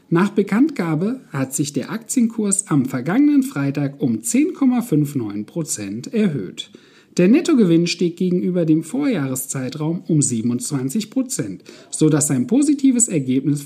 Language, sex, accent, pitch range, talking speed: German, male, German, 145-230 Hz, 115 wpm